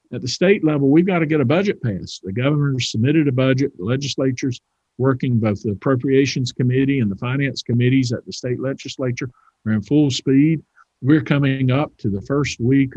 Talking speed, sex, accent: 195 wpm, male, American